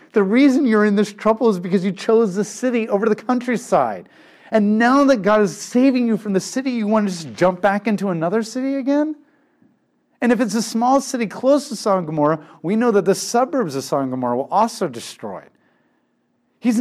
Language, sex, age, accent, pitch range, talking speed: English, male, 40-59, American, 150-225 Hz, 205 wpm